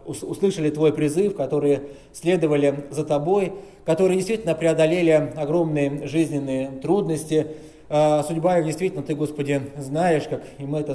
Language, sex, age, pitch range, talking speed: Russian, male, 20-39, 145-175 Hz, 120 wpm